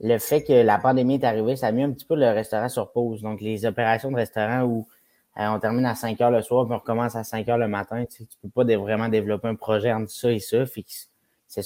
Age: 20-39